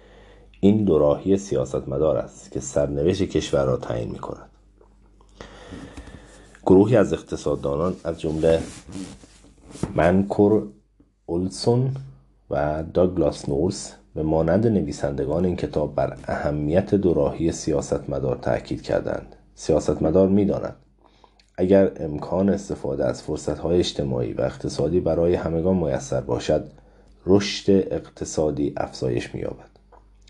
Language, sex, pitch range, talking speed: Persian, male, 75-100 Hz, 95 wpm